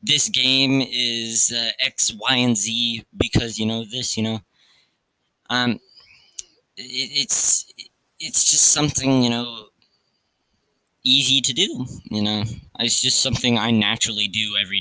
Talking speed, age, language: 135 wpm, 20-39, English